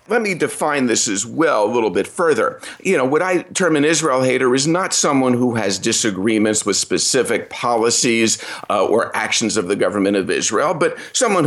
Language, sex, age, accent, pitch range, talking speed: English, male, 50-69, American, 105-130 Hz, 195 wpm